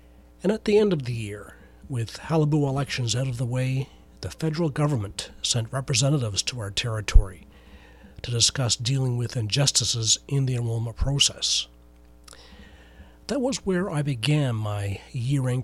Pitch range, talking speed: 110-140 Hz, 145 wpm